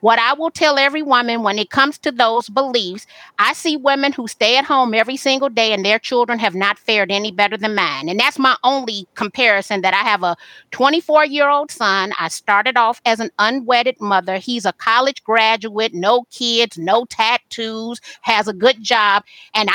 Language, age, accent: English, 40-59, American